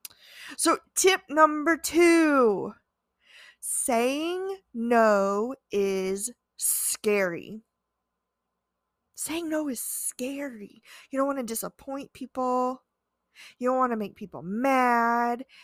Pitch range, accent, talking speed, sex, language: 215-300 Hz, American, 95 wpm, female, English